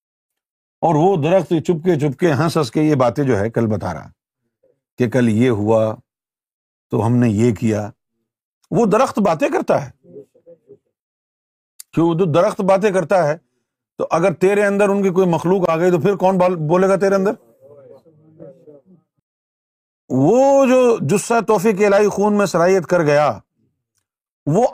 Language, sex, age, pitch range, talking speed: Urdu, male, 50-69, 135-200 Hz, 150 wpm